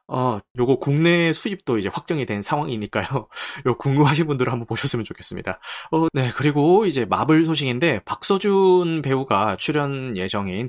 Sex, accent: male, native